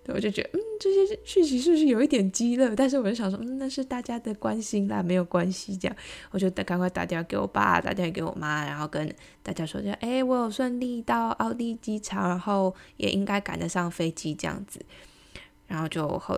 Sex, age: female, 20-39